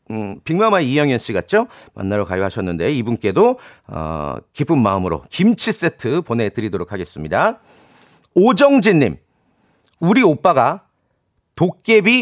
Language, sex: Korean, male